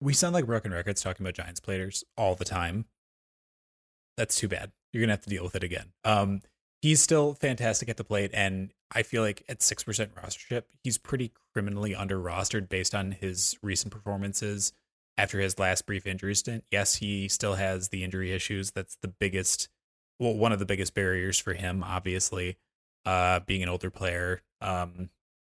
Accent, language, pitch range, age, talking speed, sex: American, English, 90-105 Hz, 20-39, 190 wpm, male